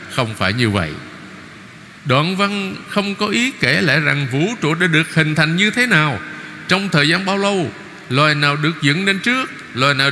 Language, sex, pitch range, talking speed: Vietnamese, male, 135-190 Hz, 200 wpm